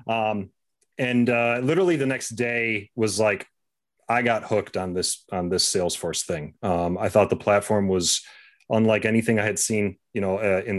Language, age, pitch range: English, 30-49, 95-115 Hz